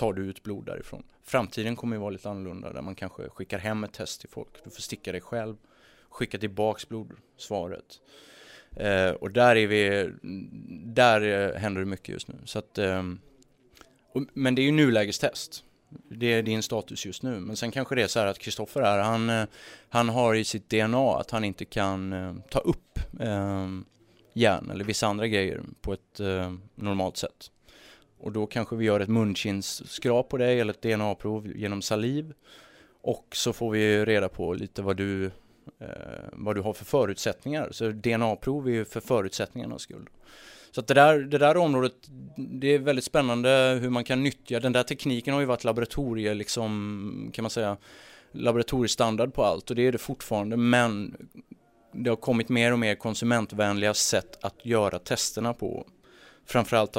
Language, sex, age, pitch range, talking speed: English, male, 20-39, 100-120 Hz, 180 wpm